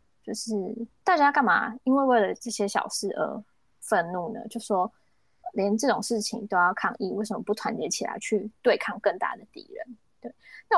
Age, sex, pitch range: 20-39, female, 195-235 Hz